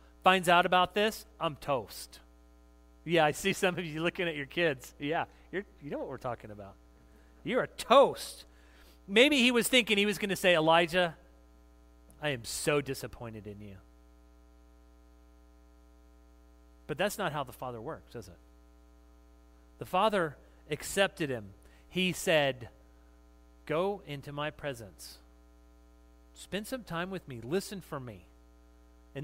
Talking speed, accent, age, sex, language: 145 wpm, American, 30-49, male, English